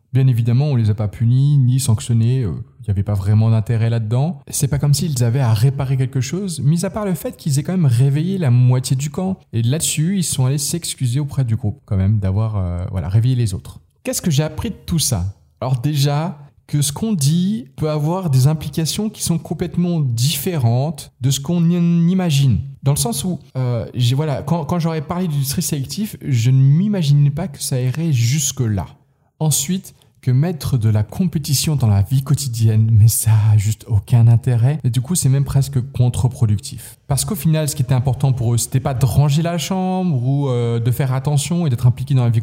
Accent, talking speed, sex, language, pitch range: French, 215 wpm, male, French, 120-150 Hz